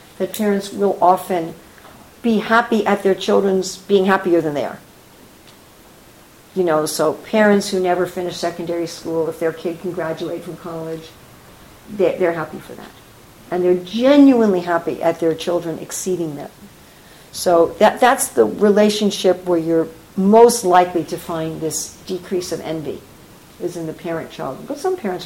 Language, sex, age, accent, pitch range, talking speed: English, female, 60-79, American, 170-210 Hz, 155 wpm